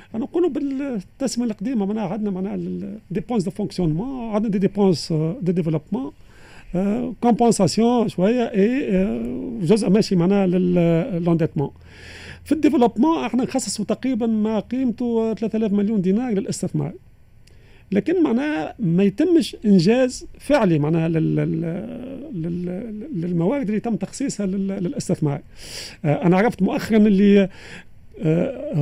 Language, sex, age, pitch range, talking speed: Arabic, male, 40-59, 170-235 Hz, 115 wpm